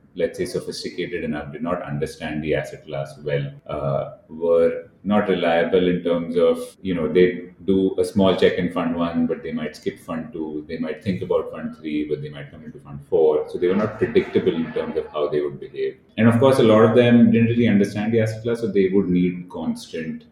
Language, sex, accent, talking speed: Hindi, male, native, 230 wpm